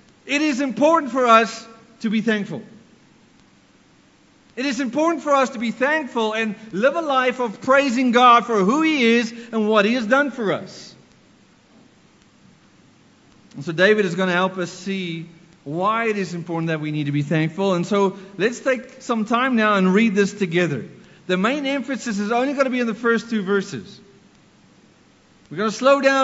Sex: male